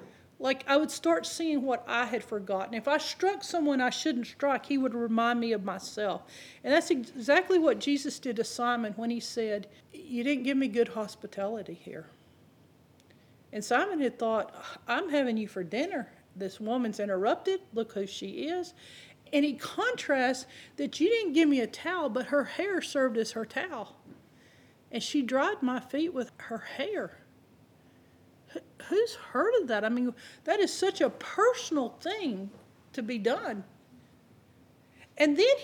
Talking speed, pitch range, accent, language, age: 165 wpm, 230-325 Hz, American, English, 40-59